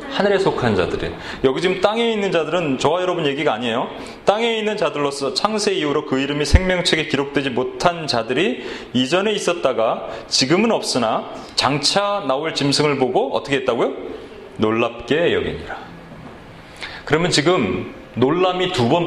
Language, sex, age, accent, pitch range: Korean, male, 30-49, native, 140-205 Hz